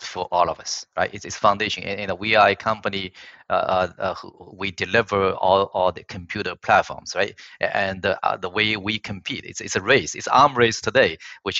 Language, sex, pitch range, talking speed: English, male, 95-115 Hz, 205 wpm